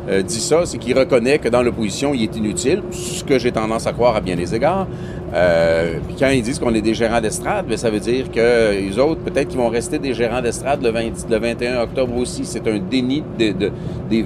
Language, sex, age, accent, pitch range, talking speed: French, male, 40-59, Canadian, 115-155 Hz, 245 wpm